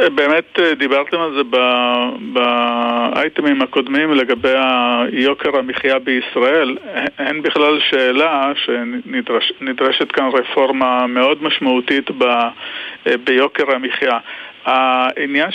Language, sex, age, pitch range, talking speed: Hebrew, male, 50-69, 130-170 Hz, 80 wpm